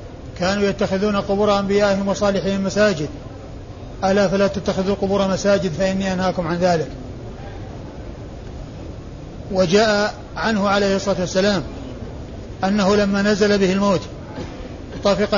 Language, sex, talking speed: Arabic, male, 100 wpm